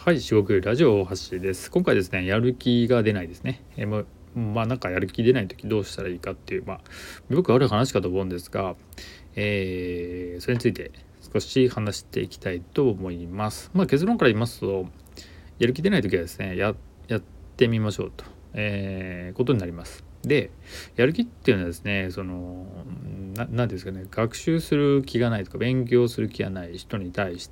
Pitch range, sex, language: 90-115 Hz, male, Japanese